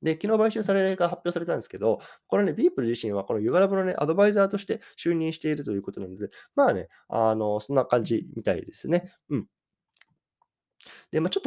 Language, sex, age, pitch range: Japanese, male, 20-39, 100-170 Hz